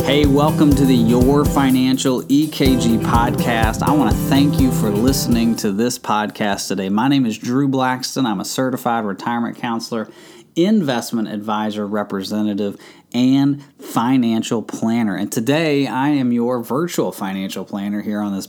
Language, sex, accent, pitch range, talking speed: English, male, American, 105-140 Hz, 150 wpm